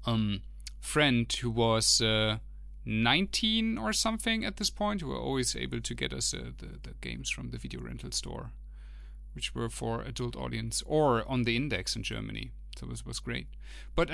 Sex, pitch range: male, 110-130 Hz